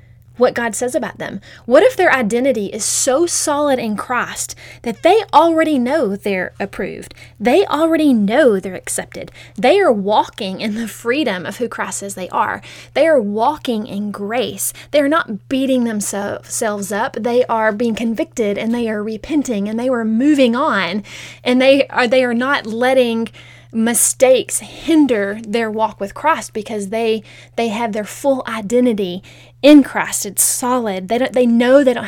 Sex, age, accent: female, 20-39, American